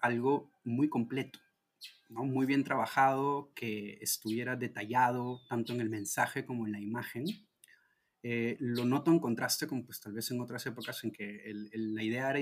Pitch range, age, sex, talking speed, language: 115-140 Hz, 30-49, male, 180 wpm, Spanish